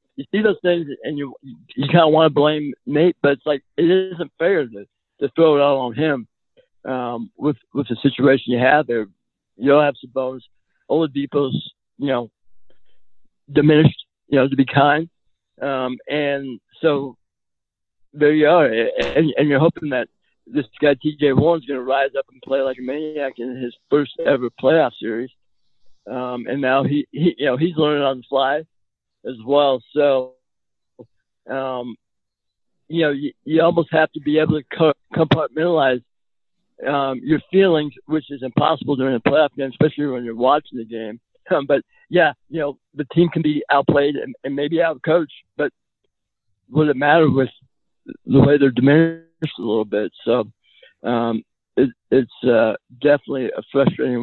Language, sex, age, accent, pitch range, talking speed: English, male, 60-79, American, 125-155 Hz, 175 wpm